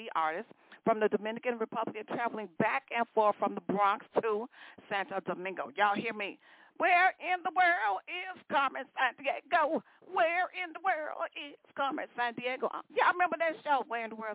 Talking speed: 180 wpm